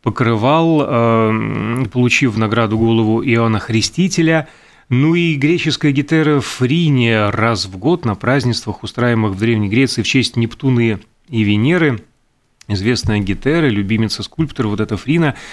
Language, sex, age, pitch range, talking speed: Russian, male, 30-49, 115-155 Hz, 125 wpm